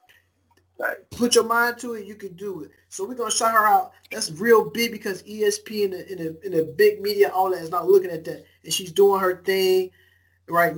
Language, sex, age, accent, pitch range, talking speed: English, male, 20-39, American, 170-210 Hz, 225 wpm